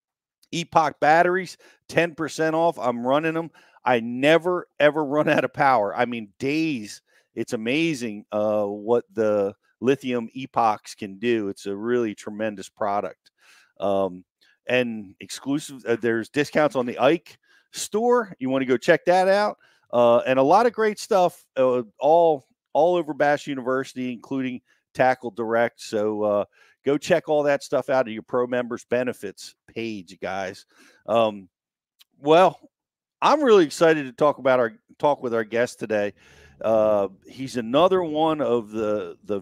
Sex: male